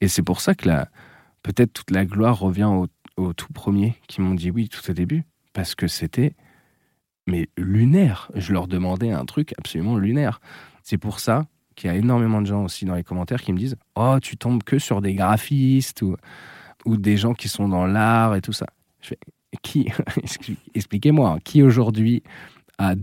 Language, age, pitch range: French, 20-39, 100-130 Hz